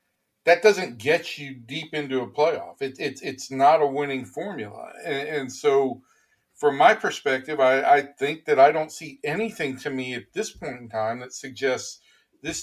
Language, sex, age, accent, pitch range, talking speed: English, male, 40-59, American, 130-155 Hz, 185 wpm